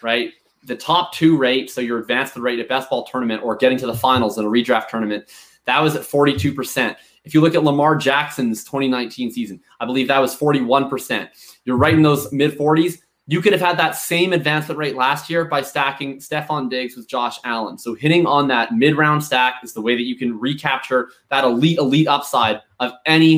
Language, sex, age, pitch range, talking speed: English, male, 20-39, 125-150 Hz, 205 wpm